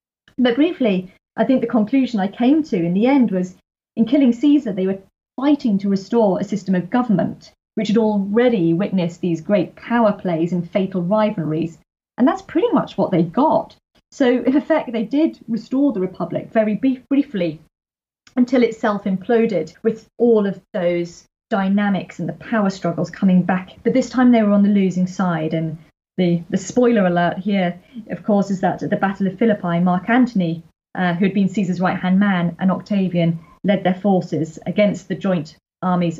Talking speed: 180 wpm